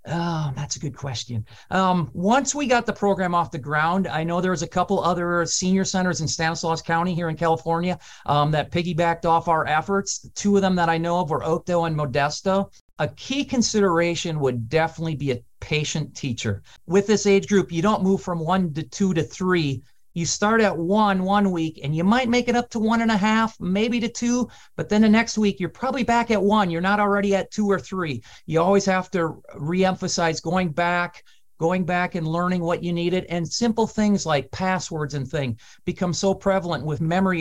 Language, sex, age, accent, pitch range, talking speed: English, male, 40-59, American, 160-190 Hz, 210 wpm